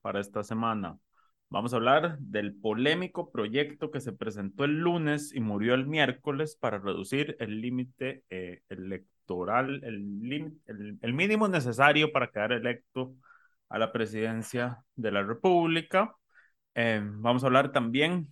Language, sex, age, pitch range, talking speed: Spanish, male, 30-49, 115-155 Hz, 145 wpm